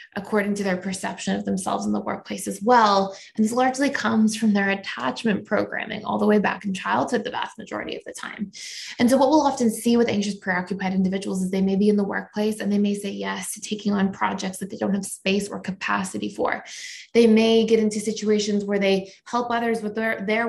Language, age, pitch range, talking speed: English, 20-39, 195-225 Hz, 225 wpm